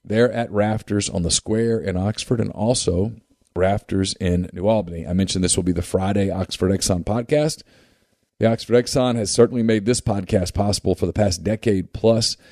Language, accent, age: English, American, 40-59